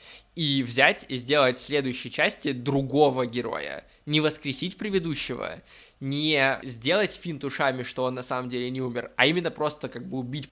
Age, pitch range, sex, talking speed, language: 20-39, 125-145 Hz, male, 160 wpm, Russian